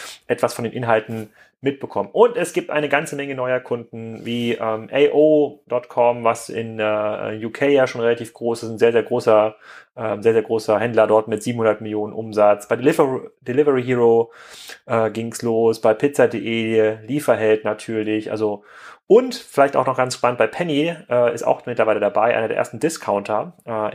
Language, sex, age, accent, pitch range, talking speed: German, male, 30-49, German, 110-140 Hz, 175 wpm